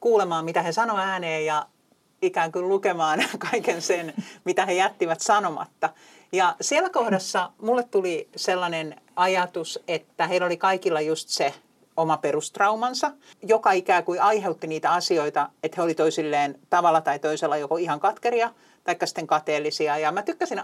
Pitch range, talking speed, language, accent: 160-215 Hz, 150 wpm, Finnish, native